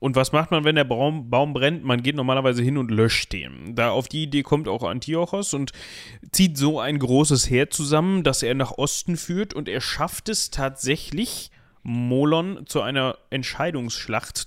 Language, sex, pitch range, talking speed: German, male, 130-165 Hz, 185 wpm